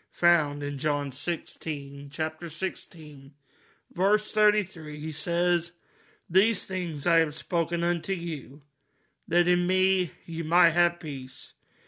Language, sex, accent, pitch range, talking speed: English, male, American, 145-175 Hz, 120 wpm